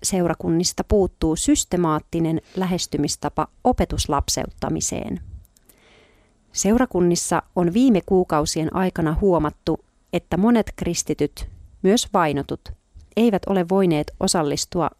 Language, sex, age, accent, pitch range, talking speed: Finnish, female, 40-59, native, 150-190 Hz, 80 wpm